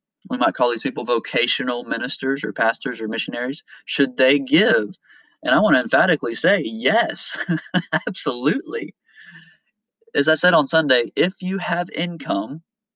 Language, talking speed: English, 145 wpm